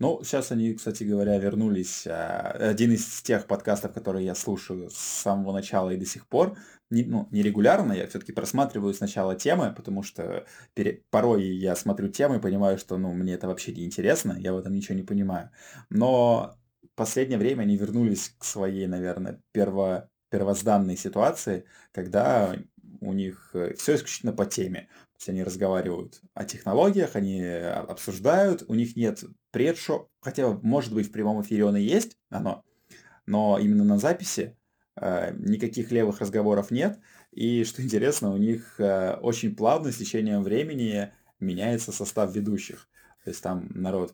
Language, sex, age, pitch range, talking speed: Russian, male, 20-39, 95-115 Hz, 160 wpm